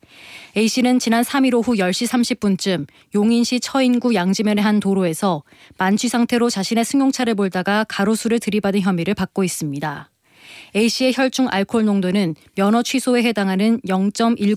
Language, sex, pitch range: Korean, female, 195-235 Hz